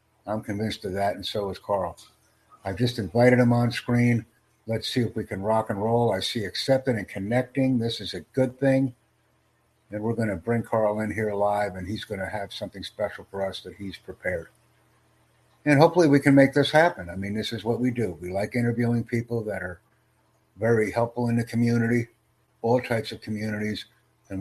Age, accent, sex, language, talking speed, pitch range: 60-79, American, male, English, 200 wpm, 100-120 Hz